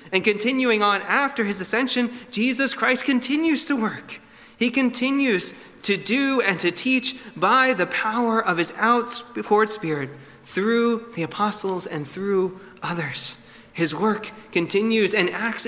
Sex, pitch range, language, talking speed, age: male, 160-230 Hz, English, 140 wpm, 20-39